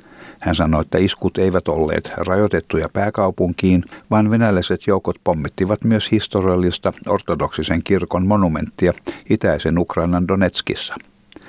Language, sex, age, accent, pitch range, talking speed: Finnish, male, 60-79, native, 95-120 Hz, 105 wpm